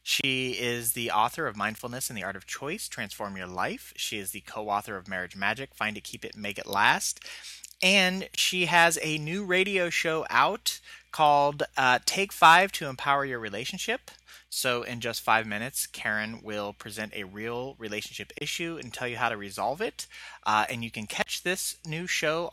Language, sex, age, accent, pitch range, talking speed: English, male, 30-49, American, 115-165 Hz, 190 wpm